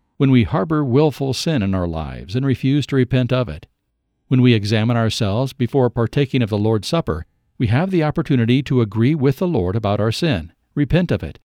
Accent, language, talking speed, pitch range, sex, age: American, English, 205 wpm, 105-135 Hz, male, 50-69